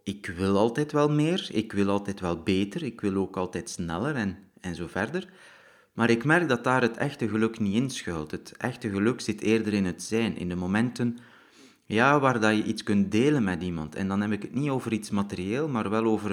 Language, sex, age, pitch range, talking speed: Dutch, male, 30-49, 95-120 Hz, 220 wpm